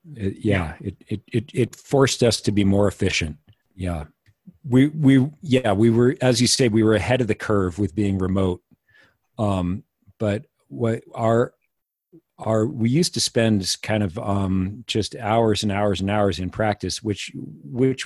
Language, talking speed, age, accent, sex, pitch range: English, 170 wpm, 40-59, American, male, 95-110 Hz